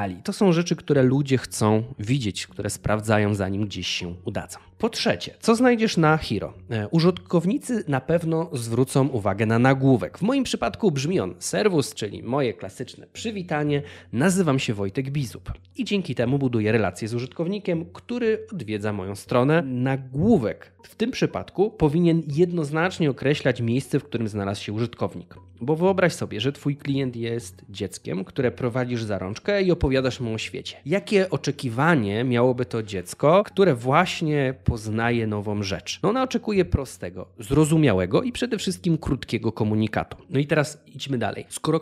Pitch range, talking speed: 105-165 Hz, 155 wpm